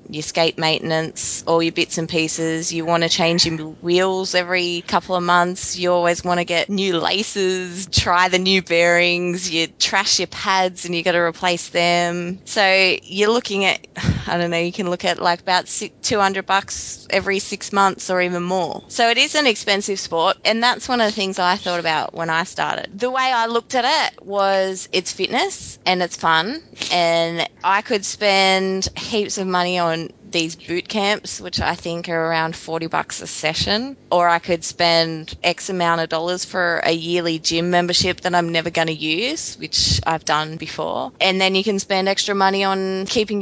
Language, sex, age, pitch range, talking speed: English, female, 20-39, 170-195 Hz, 195 wpm